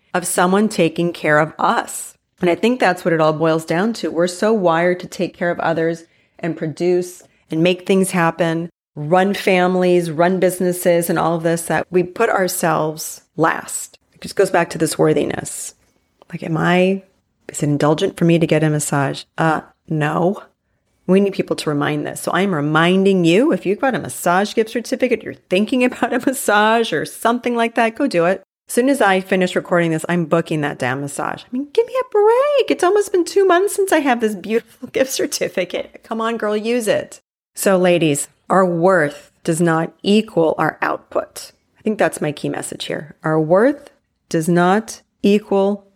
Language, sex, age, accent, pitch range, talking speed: English, female, 30-49, American, 165-210 Hz, 195 wpm